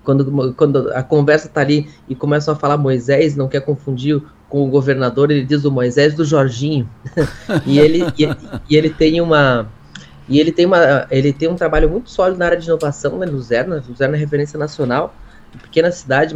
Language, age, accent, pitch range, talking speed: Portuguese, 20-39, Brazilian, 140-170 Hz, 190 wpm